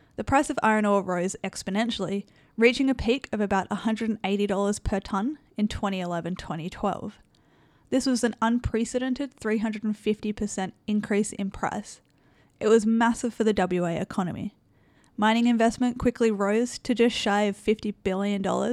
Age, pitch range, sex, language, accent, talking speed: 10-29, 195-235 Hz, female, English, Australian, 135 wpm